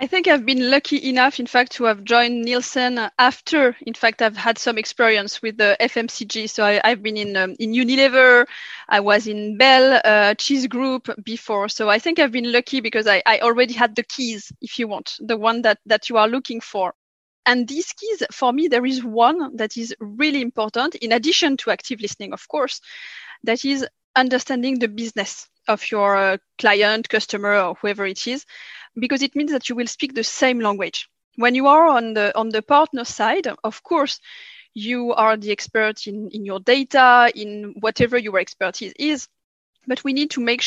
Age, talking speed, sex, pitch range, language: 20-39, 200 wpm, female, 220-270 Hz, English